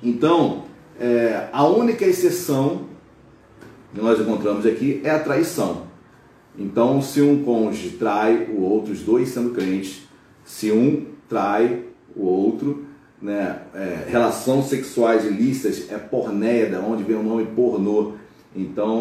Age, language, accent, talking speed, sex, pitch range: 40-59, Portuguese, Brazilian, 135 wpm, male, 110-160 Hz